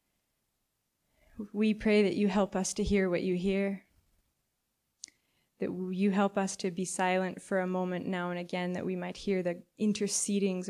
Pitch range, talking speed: 180-200 Hz, 170 wpm